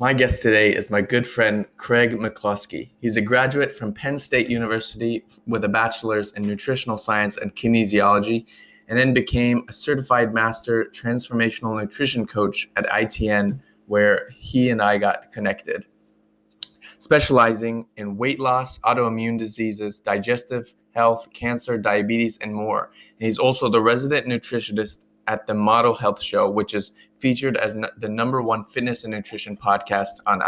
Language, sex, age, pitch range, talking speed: English, male, 20-39, 105-120 Hz, 150 wpm